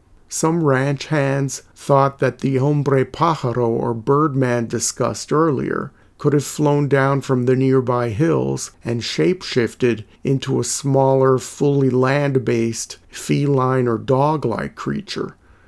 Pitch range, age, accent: 120-145 Hz, 50-69, American